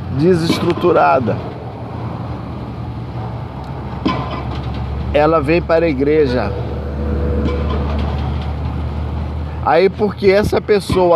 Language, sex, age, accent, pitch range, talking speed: Portuguese, male, 50-69, Brazilian, 110-170 Hz, 55 wpm